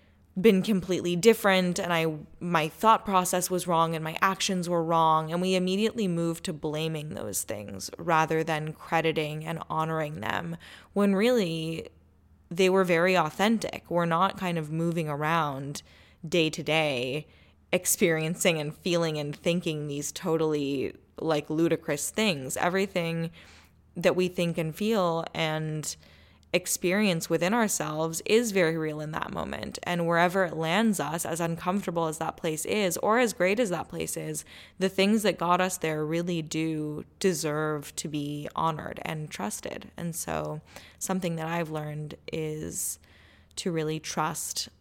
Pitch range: 155-180 Hz